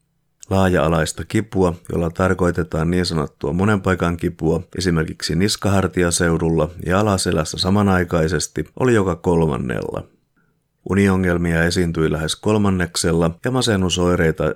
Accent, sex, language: native, male, Finnish